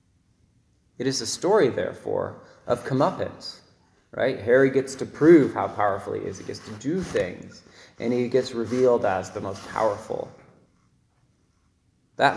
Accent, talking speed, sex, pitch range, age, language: American, 145 wpm, male, 110-135 Hz, 20-39, English